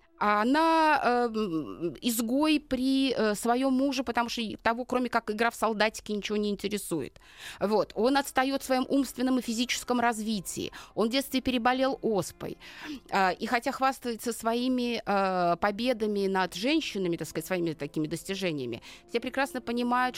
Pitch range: 195-250 Hz